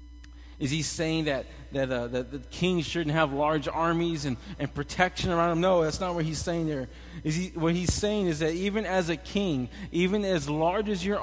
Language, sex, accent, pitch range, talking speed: English, male, American, 155-195 Hz, 220 wpm